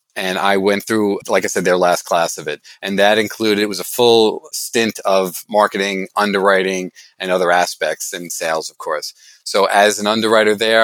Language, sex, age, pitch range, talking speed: English, male, 40-59, 100-115 Hz, 195 wpm